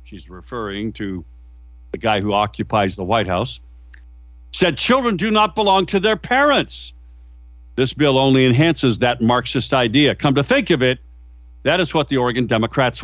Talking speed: 165 wpm